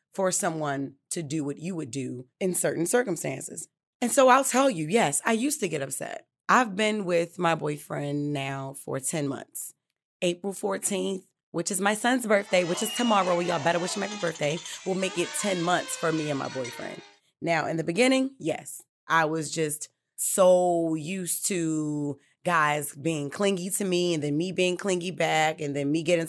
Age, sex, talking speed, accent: 20-39, female, 190 wpm, American